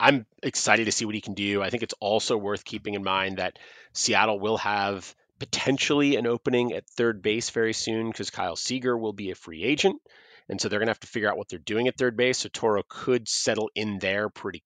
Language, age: English, 30-49